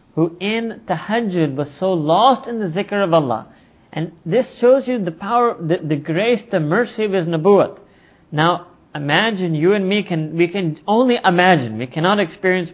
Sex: male